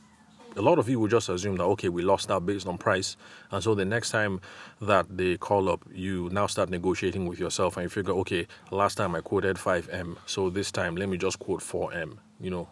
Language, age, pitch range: English, 30-49, 90-110 Hz